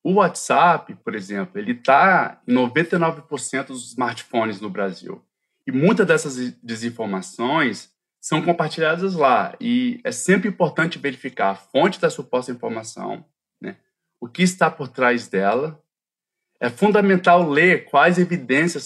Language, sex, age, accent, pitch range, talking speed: Portuguese, male, 20-39, Brazilian, 125-165 Hz, 130 wpm